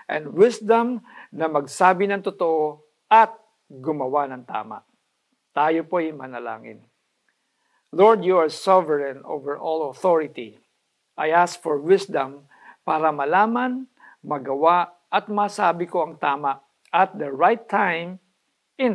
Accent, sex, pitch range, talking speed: native, male, 155-210 Hz, 120 wpm